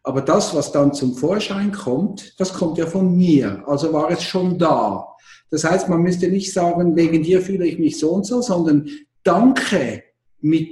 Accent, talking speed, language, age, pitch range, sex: German, 190 wpm, German, 50-69, 145-190 Hz, male